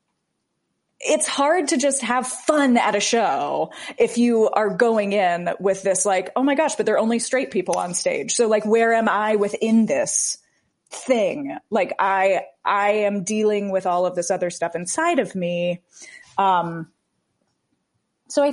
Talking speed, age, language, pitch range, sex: 170 wpm, 30-49, English, 185-260 Hz, female